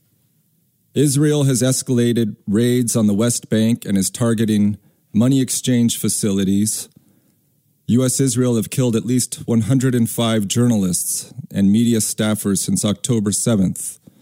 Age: 40-59